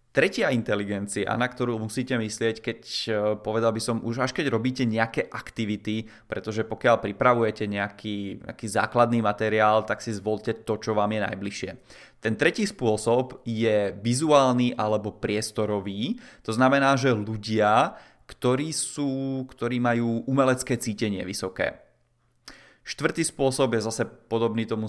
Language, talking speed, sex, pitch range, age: Czech, 135 wpm, male, 105-125 Hz, 20-39